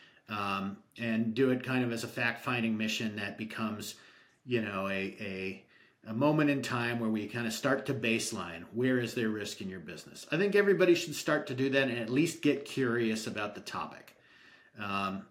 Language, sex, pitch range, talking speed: English, male, 105-125 Hz, 200 wpm